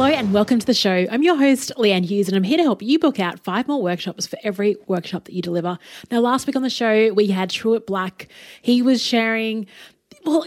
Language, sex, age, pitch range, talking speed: English, female, 30-49, 195-245 Hz, 240 wpm